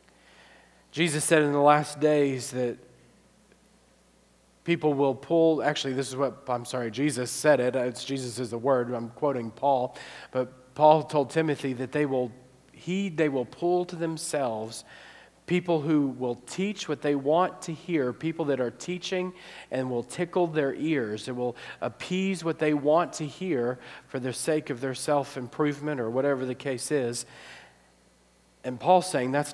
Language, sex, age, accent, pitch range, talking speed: English, male, 40-59, American, 130-175 Hz, 165 wpm